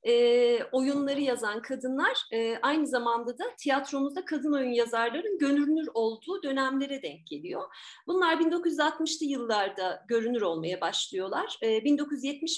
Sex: female